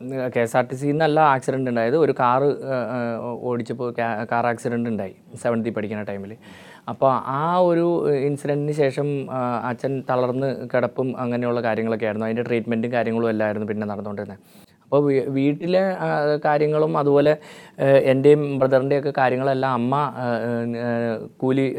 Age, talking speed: 20-39, 120 wpm